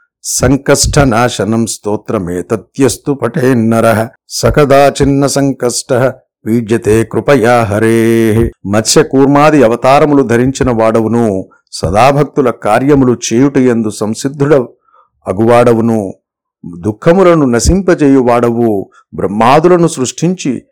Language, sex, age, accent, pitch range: Telugu, male, 50-69, native, 115-140 Hz